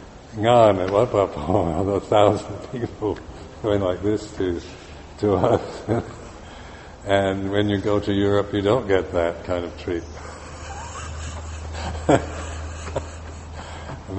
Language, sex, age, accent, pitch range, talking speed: English, male, 60-79, American, 85-100 Hz, 105 wpm